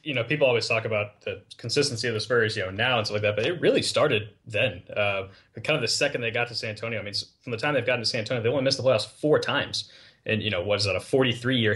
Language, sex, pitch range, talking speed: English, male, 105-115 Hz, 295 wpm